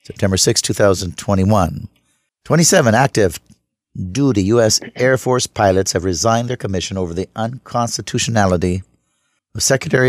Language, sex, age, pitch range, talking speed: English, male, 50-69, 100-125 Hz, 115 wpm